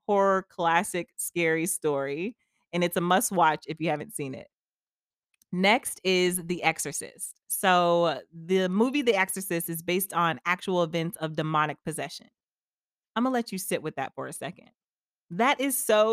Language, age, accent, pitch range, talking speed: English, 30-49, American, 165-215 Hz, 165 wpm